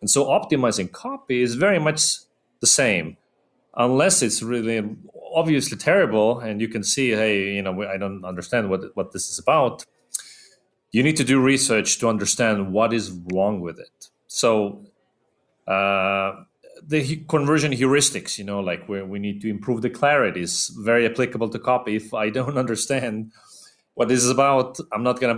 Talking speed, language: 175 wpm, English